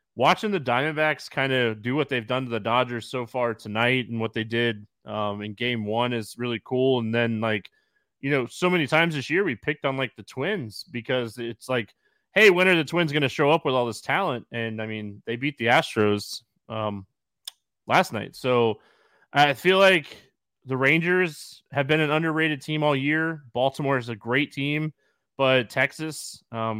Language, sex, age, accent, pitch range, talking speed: English, male, 20-39, American, 115-150 Hz, 200 wpm